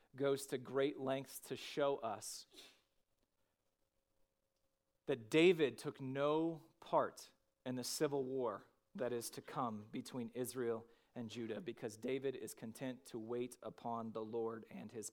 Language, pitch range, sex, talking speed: English, 125-160 Hz, male, 140 wpm